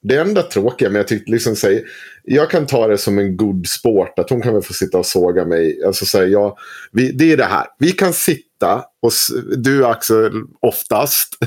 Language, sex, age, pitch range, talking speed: Swedish, male, 30-49, 95-135 Hz, 210 wpm